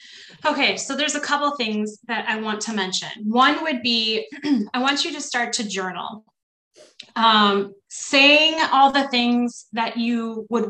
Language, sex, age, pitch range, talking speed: English, female, 20-39, 215-265 Hz, 165 wpm